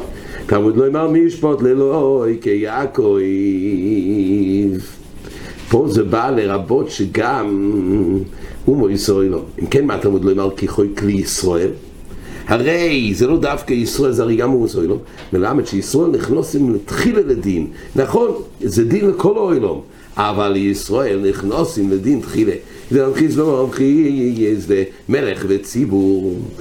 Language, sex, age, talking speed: English, male, 60-79, 120 wpm